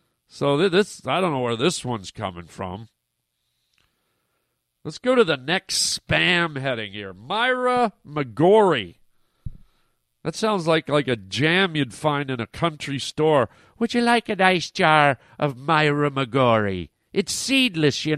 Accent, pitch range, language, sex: American, 135-190 Hz, English, male